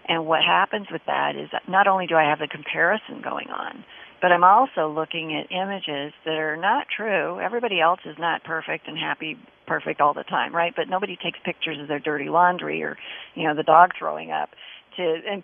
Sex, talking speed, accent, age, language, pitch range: female, 215 wpm, American, 40-59, English, 155-185 Hz